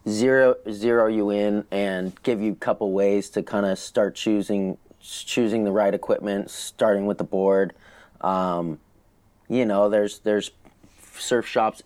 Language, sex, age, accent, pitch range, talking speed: English, male, 30-49, American, 100-115 Hz, 150 wpm